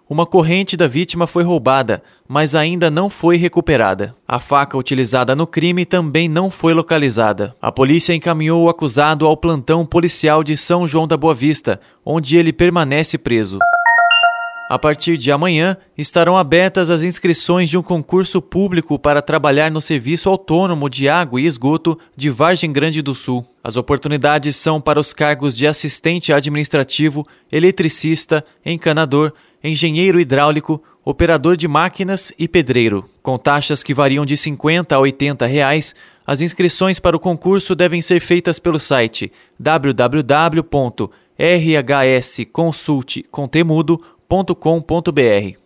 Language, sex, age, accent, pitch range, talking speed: Portuguese, male, 20-39, Brazilian, 145-170 Hz, 135 wpm